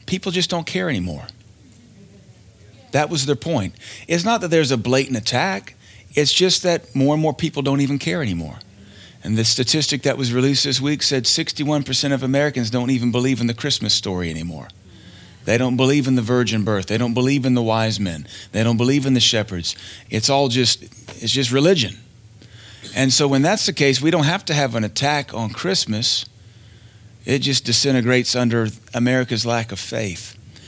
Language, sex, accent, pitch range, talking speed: English, male, American, 110-140 Hz, 190 wpm